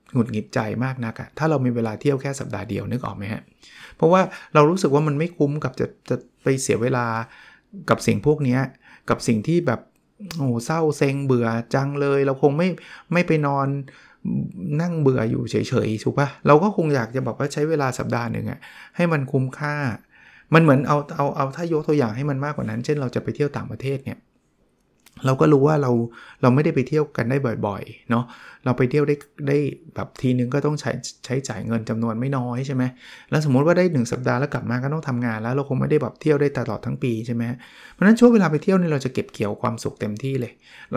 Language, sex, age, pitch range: Thai, male, 20-39, 120-150 Hz